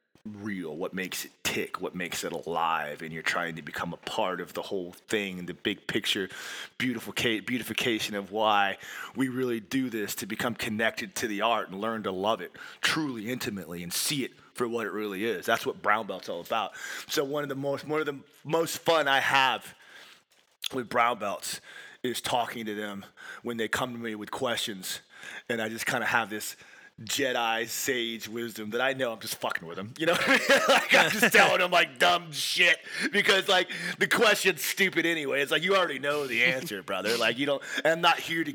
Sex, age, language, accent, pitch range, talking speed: male, 30-49, English, American, 115-175 Hz, 210 wpm